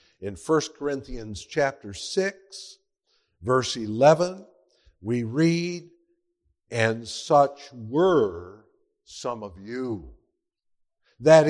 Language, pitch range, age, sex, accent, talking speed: English, 130-210 Hz, 60-79, male, American, 85 wpm